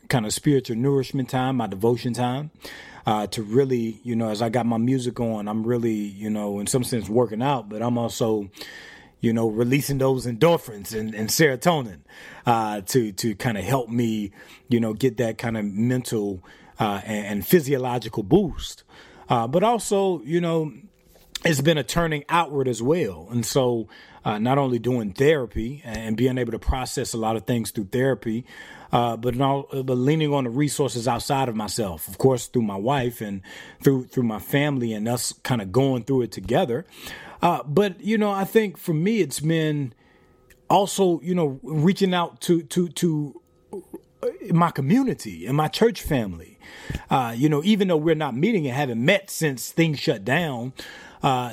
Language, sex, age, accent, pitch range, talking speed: English, male, 30-49, American, 115-150 Hz, 185 wpm